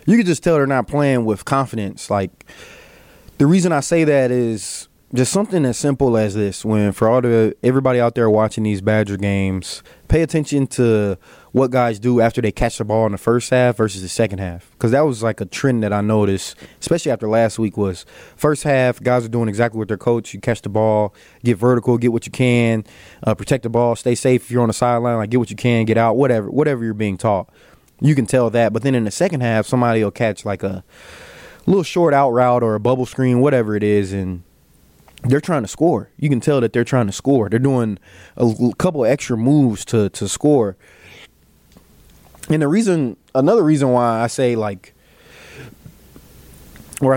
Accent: American